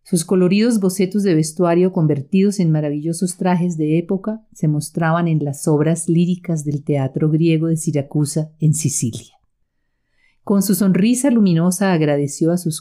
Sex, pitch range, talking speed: female, 145-175 Hz, 145 wpm